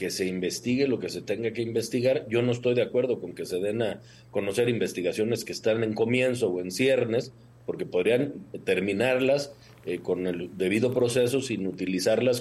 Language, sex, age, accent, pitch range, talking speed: Spanish, male, 40-59, Mexican, 110-130 Hz, 185 wpm